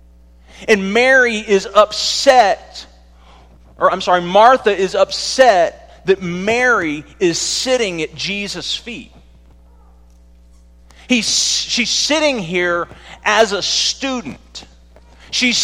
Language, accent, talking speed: English, American, 90 wpm